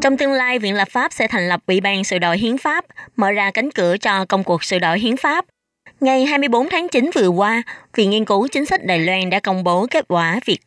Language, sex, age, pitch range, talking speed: Vietnamese, female, 20-39, 180-245 Hz, 255 wpm